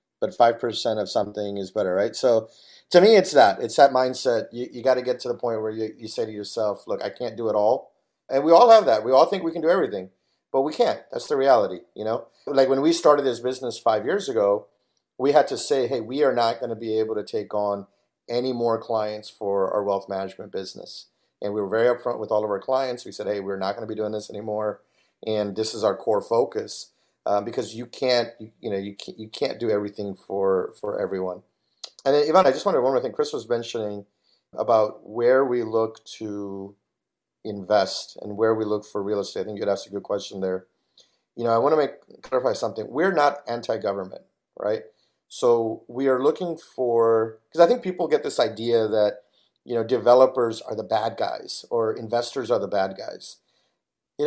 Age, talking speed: 40-59, 220 wpm